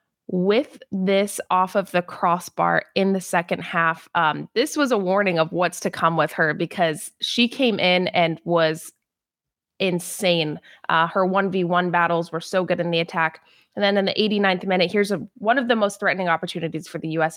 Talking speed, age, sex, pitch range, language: 185 wpm, 20-39, female, 175-210 Hz, English